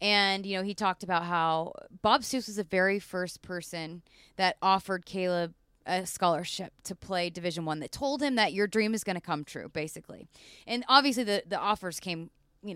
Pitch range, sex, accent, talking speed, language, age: 180-220 Hz, female, American, 200 wpm, English, 20-39